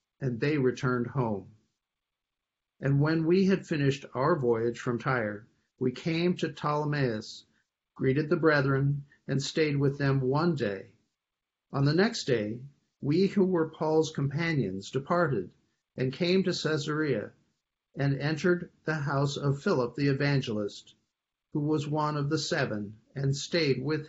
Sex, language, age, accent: male, English, 50-69, American